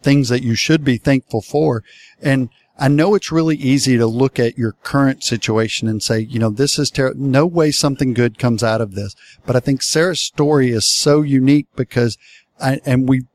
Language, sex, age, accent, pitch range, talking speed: English, male, 50-69, American, 115-140 Hz, 205 wpm